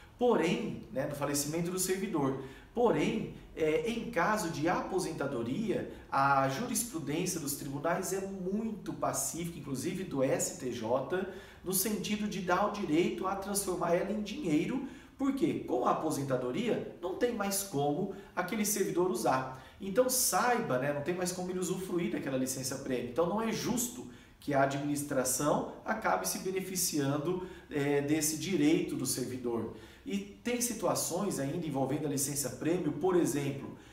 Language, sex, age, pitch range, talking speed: Portuguese, male, 40-59, 145-215 Hz, 140 wpm